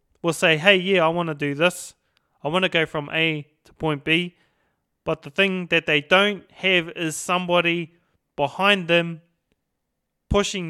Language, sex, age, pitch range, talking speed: English, male, 30-49, 150-180 Hz, 170 wpm